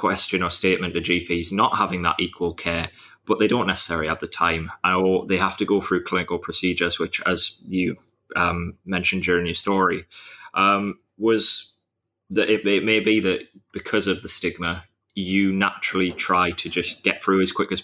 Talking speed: 185 wpm